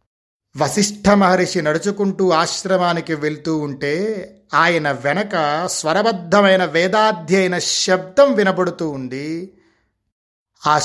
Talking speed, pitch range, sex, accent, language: 70 wpm, 150-200 Hz, male, native, Telugu